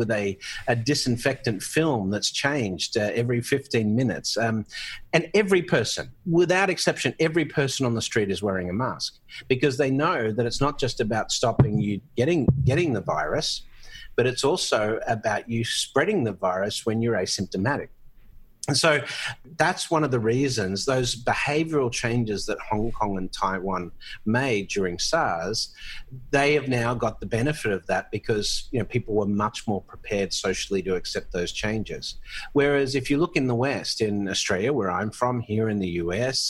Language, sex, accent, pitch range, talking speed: English, male, Australian, 110-155 Hz, 175 wpm